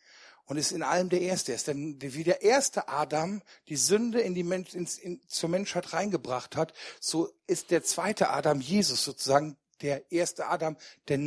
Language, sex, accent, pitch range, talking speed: German, male, German, 150-200 Hz, 175 wpm